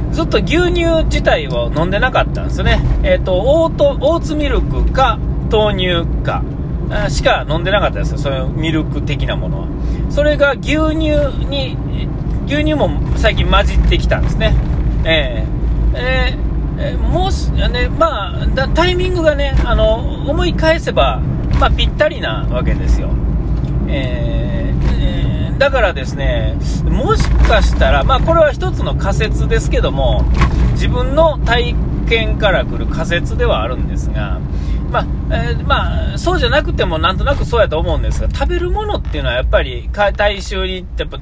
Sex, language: male, Japanese